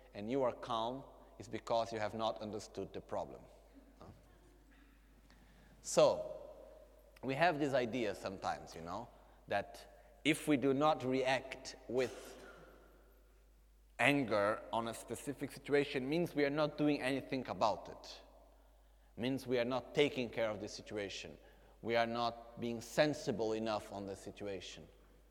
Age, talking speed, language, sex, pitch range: 30-49, 140 wpm, Italian, male, 110-140 Hz